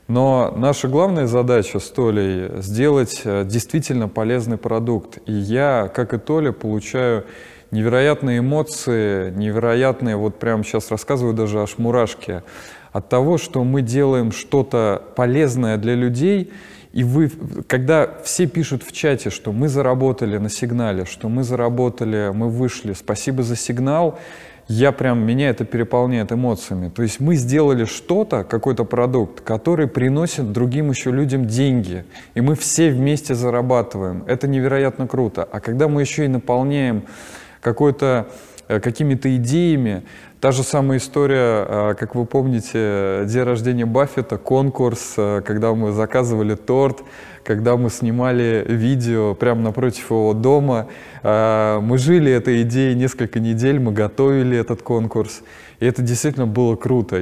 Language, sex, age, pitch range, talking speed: Russian, male, 20-39, 110-130 Hz, 130 wpm